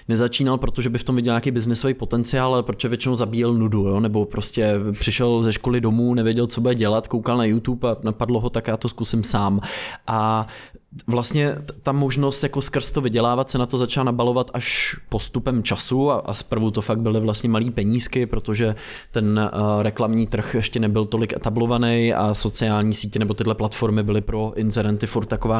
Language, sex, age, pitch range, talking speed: Czech, male, 20-39, 115-130 Hz, 185 wpm